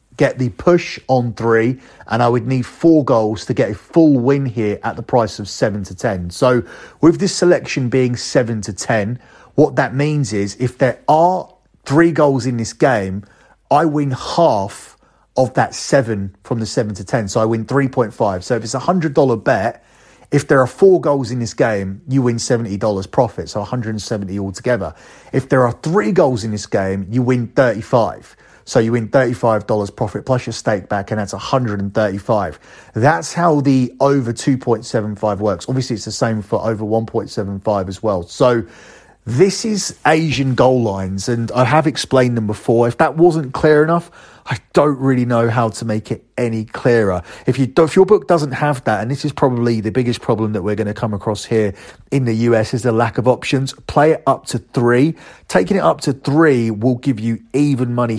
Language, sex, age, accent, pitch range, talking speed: English, male, 30-49, British, 110-140 Hz, 200 wpm